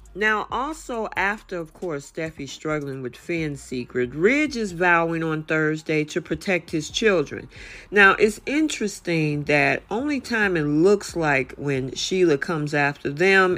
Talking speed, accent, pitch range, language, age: 145 wpm, American, 150-195 Hz, English, 40-59